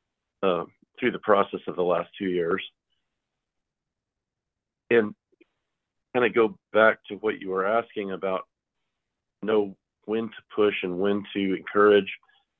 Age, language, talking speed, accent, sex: 40-59, English, 135 wpm, American, male